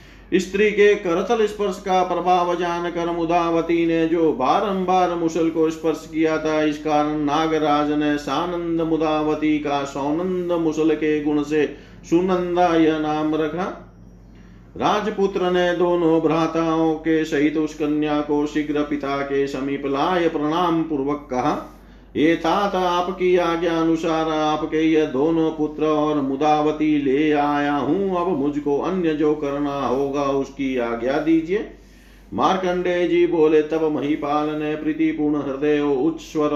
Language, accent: Hindi, native